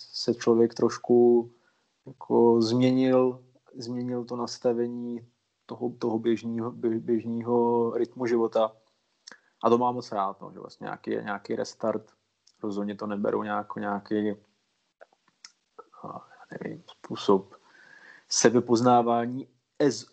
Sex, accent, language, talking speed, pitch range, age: male, native, Czech, 100 wpm, 115-120 Hz, 30-49